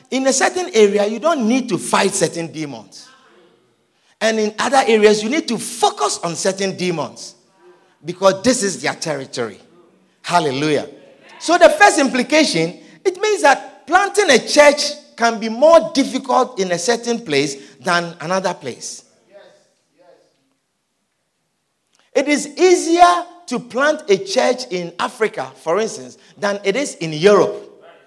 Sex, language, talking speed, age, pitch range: male, English, 140 wpm, 50-69, 200-330 Hz